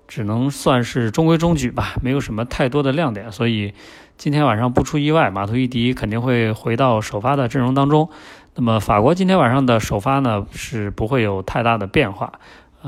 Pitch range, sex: 105-135 Hz, male